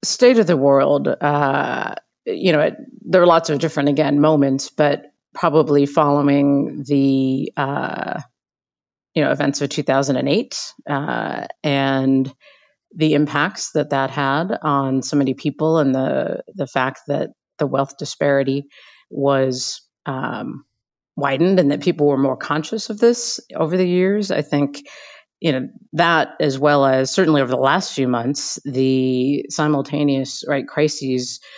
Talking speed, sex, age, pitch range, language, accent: 145 wpm, female, 40-59, 135-155 Hz, English, American